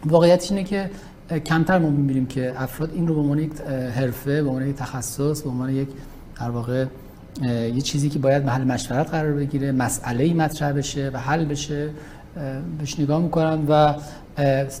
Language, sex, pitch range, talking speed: Persian, male, 140-160 Hz, 160 wpm